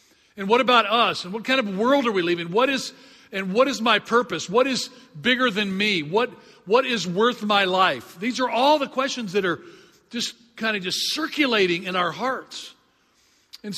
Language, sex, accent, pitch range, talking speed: English, male, American, 185-230 Hz, 200 wpm